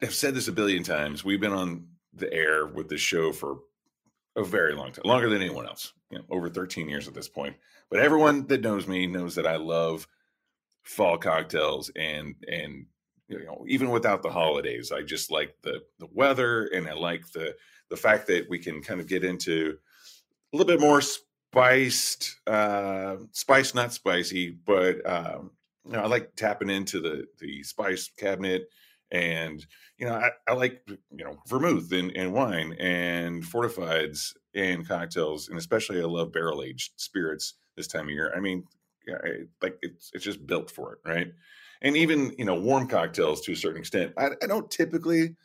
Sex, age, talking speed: male, 30-49, 185 wpm